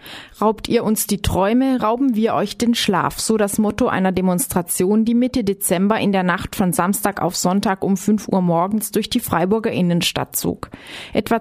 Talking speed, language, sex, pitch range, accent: 185 wpm, German, female, 195-230 Hz, German